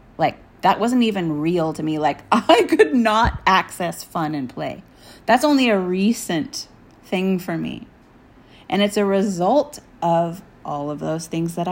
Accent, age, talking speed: American, 30-49, 160 wpm